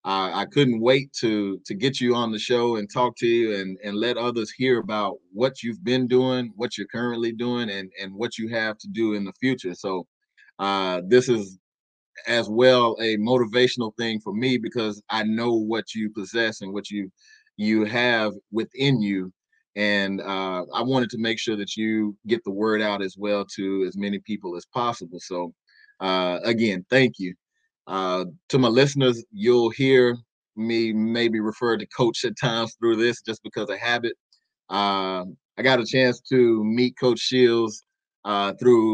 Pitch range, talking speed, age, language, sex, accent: 100-120 Hz, 185 wpm, 30-49, English, male, American